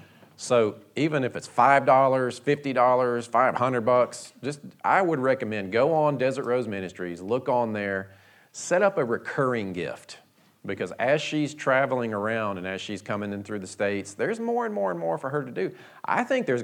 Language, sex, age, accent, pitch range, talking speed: English, male, 40-59, American, 100-135 Hz, 190 wpm